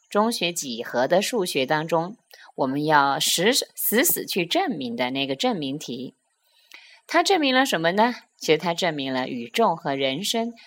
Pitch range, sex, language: 150-245 Hz, female, Chinese